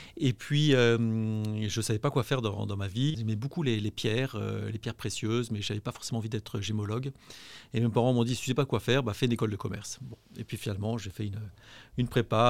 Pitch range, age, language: 105-125 Hz, 30-49, French